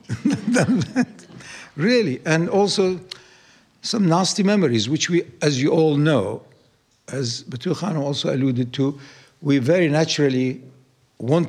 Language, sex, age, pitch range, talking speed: English, male, 60-79, 135-210 Hz, 110 wpm